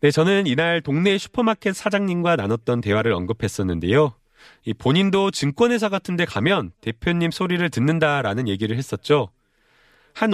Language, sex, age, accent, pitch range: Korean, male, 30-49, native, 120-190 Hz